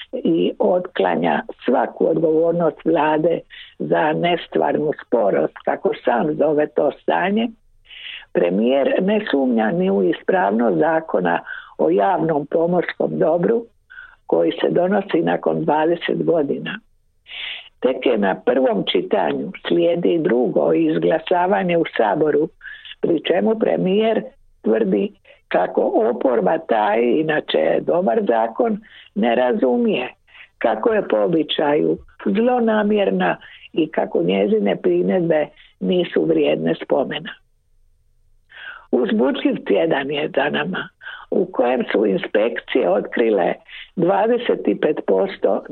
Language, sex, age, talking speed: Croatian, female, 60-79, 100 wpm